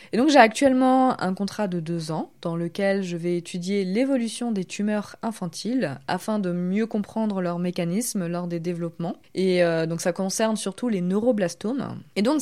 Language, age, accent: French, 20-39, French